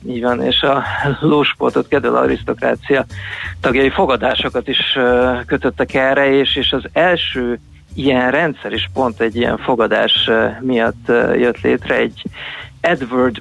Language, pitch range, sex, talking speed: Hungarian, 115-130 Hz, male, 120 wpm